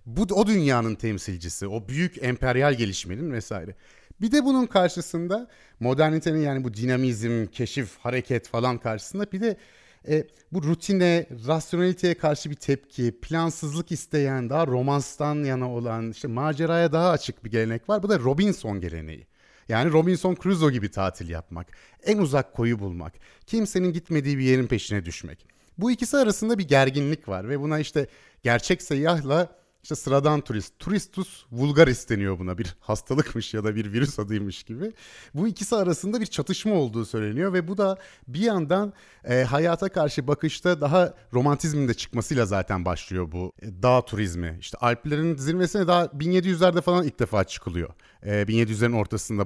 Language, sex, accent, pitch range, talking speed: Turkish, male, native, 115-185 Hz, 155 wpm